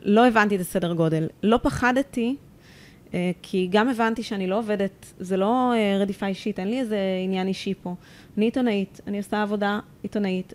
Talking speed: 175 wpm